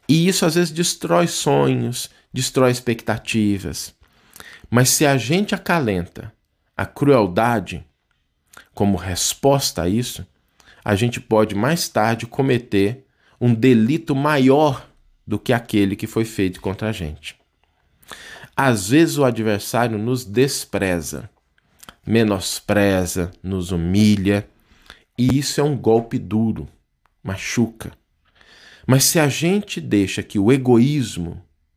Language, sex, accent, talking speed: Portuguese, male, Brazilian, 115 wpm